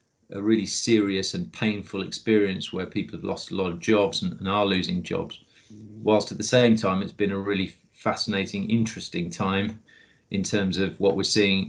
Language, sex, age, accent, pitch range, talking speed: English, male, 40-59, British, 95-110 Hz, 185 wpm